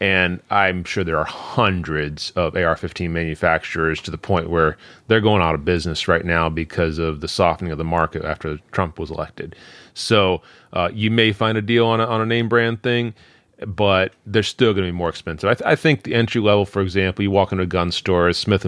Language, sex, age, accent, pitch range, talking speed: English, male, 30-49, American, 85-105 Hz, 220 wpm